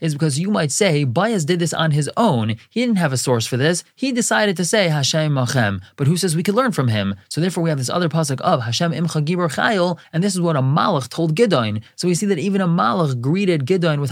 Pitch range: 130-175 Hz